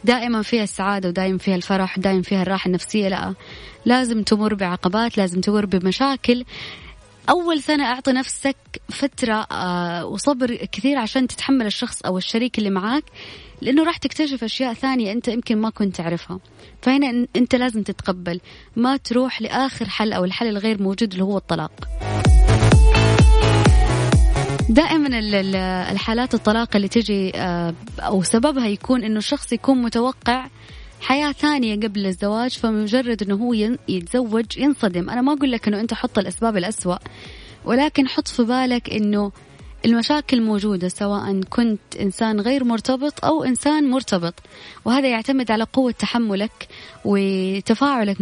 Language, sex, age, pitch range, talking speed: Arabic, female, 20-39, 190-250 Hz, 135 wpm